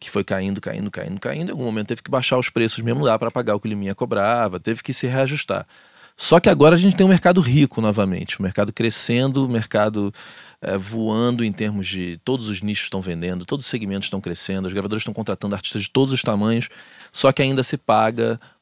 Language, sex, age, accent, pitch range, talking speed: Portuguese, male, 20-39, Brazilian, 105-135 Hz, 235 wpm